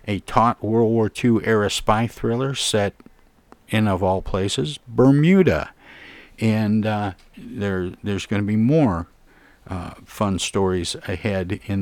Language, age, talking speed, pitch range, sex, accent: English, 50-69, 135 wpm, 90-110 Hz, male, American